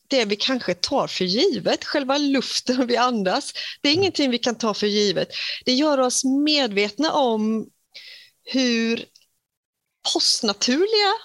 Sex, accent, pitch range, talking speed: female, native, 195-265 Hz, 135 wpm